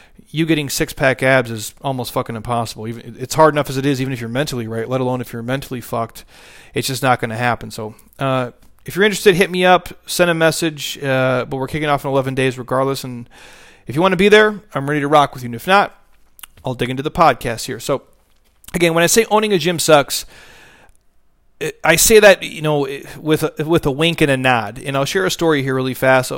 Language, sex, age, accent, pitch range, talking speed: English, male, 30-49, American, 130-155 Hz, 235 wpm